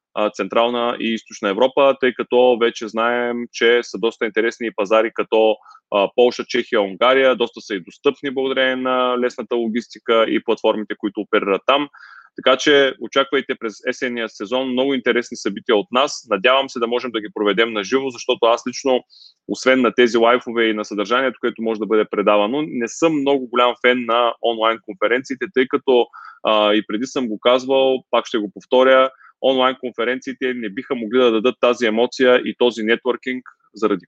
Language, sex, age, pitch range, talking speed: Bulgarian, male, 20-39, 110-125 Hz, 175 wpm